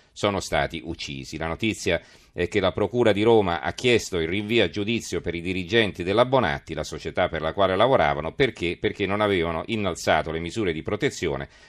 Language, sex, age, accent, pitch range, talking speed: Italian, male, 40-59, native, 85-105 Hz, 190 wpm